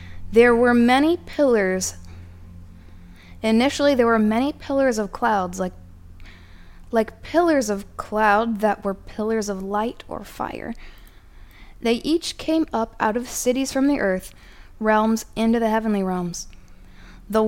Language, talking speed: English, 135 wpm